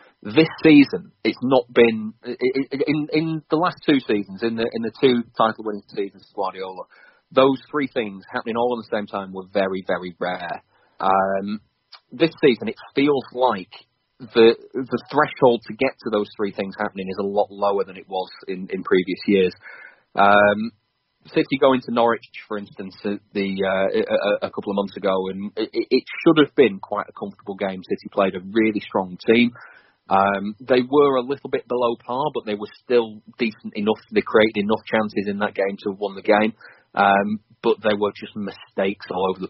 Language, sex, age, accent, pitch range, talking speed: English, male, 30-49, British, 100-130 Hz, 195 wpm